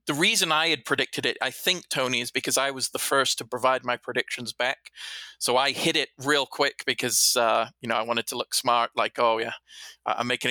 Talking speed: 230 wpm